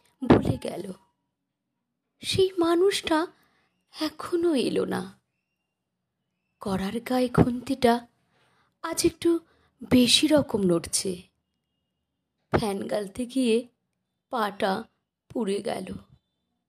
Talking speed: 75 wpm